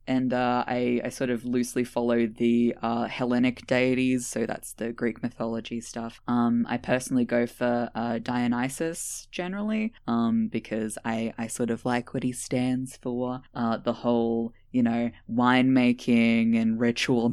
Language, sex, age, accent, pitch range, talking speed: English, female, 10-29, Australian, 120-145 Hz, 155 wpm